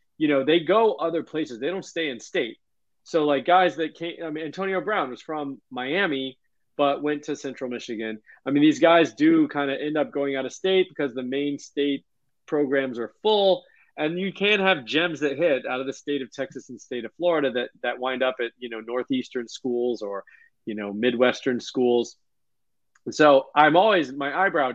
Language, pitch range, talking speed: English, 125-160 Hz, 205 wpm